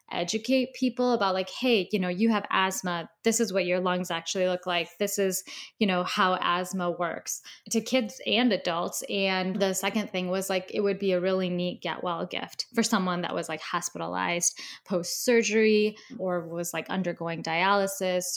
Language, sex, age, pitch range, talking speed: English, female, 10-29, 180-220 Hz, 185 wpm